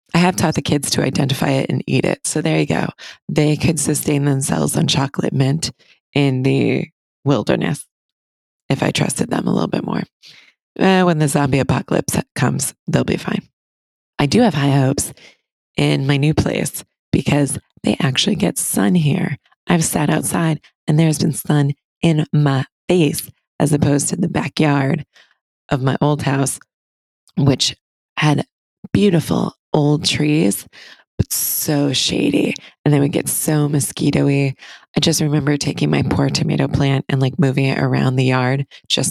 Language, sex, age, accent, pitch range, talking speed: English, female, 20-39, American, 135-155 Hz, 165 wpm